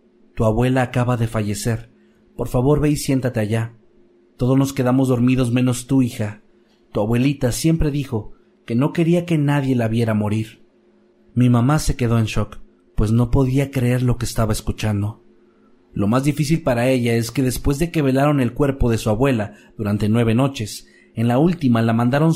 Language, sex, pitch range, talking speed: Spanish, male, 110-135 Hz, 180 wpm